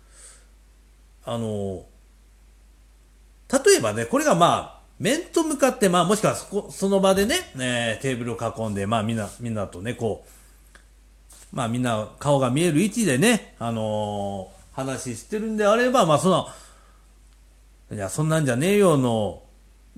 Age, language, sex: 40-59, Japanese, male